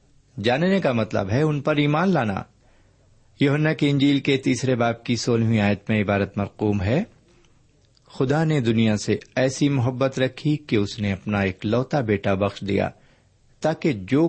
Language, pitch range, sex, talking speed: Urdu, 100-135 Hz, male, 165 wpm